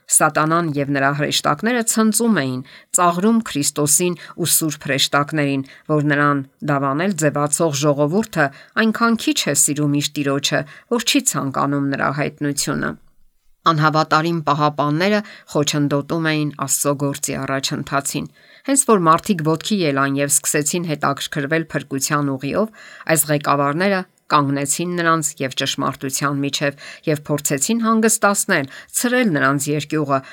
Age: 50-69